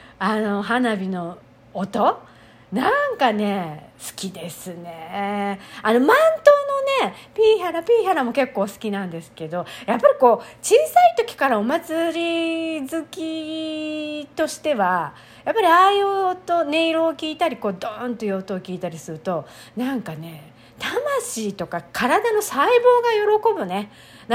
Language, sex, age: Japanese, female, 40-59